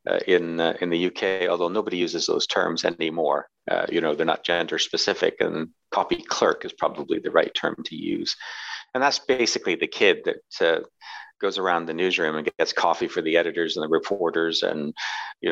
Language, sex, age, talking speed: English, male, 40-59, 195 wpm